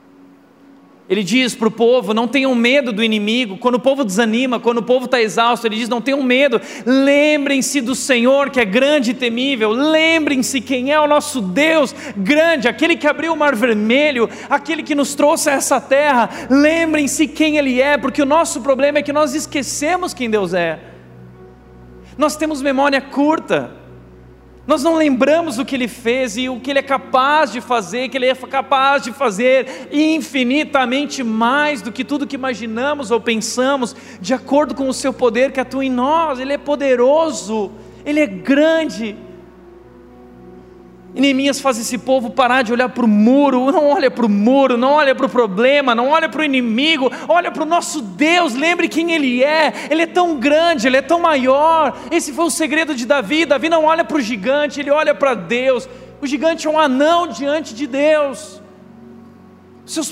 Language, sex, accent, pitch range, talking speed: Portuguese, male, Brazilian, 240-295 Hz, 185 wpm